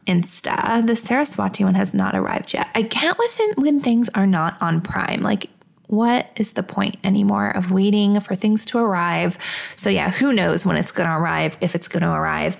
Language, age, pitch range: English, 20-39, 190-230 Hz